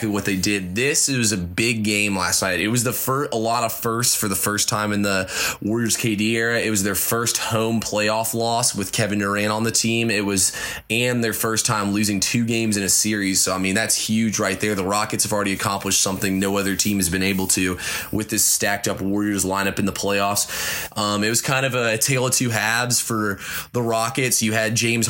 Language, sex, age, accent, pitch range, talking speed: English, male, 20-39, American, 100-110 Hz, 235 wpm